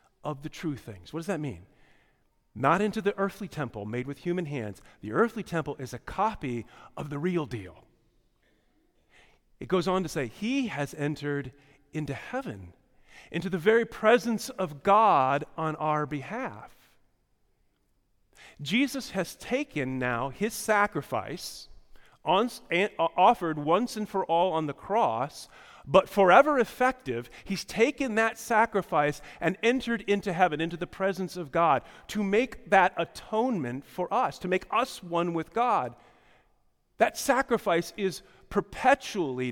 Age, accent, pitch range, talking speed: 40-59, American, 140-205 Hz, 140 wpm